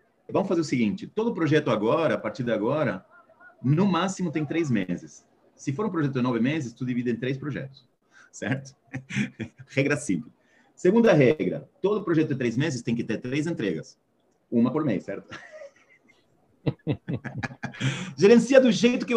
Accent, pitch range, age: Brazilian, 130-185 Hz, 40-59